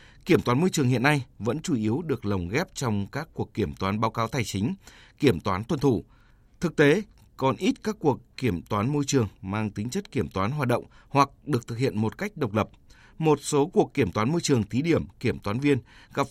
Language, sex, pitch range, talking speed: Vietnamese, male, 105-140 Hz, 230 wpm